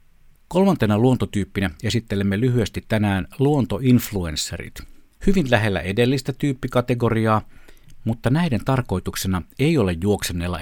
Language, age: Finnish, 60-79